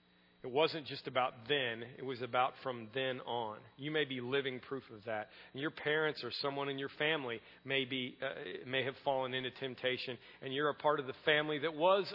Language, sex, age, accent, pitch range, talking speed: English, male, 40-59, American, 145-210 Hz, 210 wpm